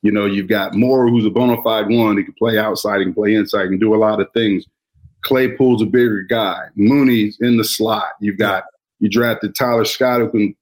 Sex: male